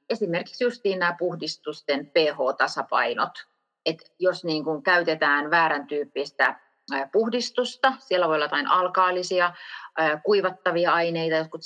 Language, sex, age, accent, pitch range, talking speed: Finnish, female, 30-49, native, 155-200 Hz, 105 wpm